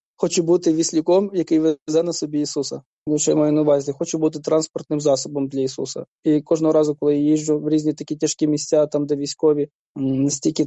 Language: Ukrainian